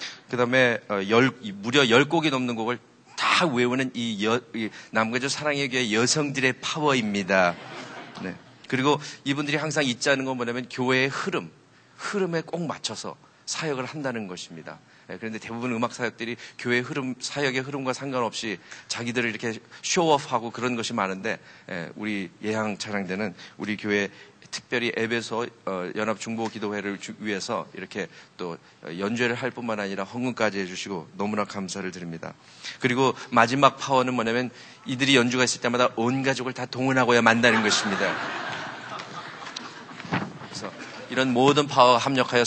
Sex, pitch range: male, 110-130 Hz